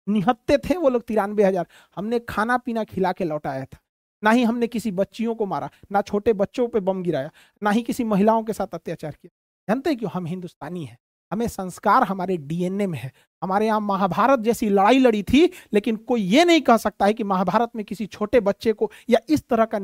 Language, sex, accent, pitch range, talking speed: Hindi, male, native, 185-240 Hz, 210 wpm